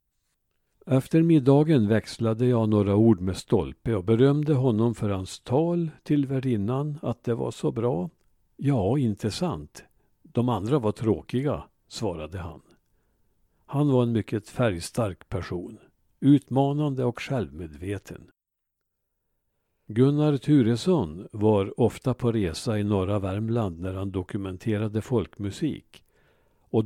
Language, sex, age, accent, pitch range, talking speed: Swedish, male, 60-79, Norwegian, 100-135 Hz, 115 wpm